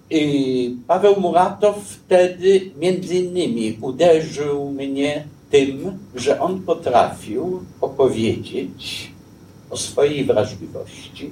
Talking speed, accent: 80 wpm, native